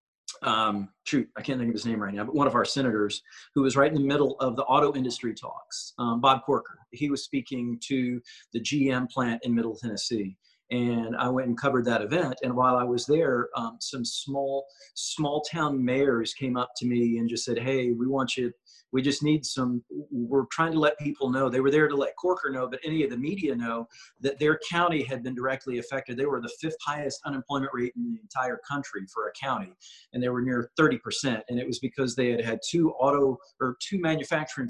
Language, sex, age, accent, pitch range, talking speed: English, male, 40-59, American, 120-145 Hz, 225 wpm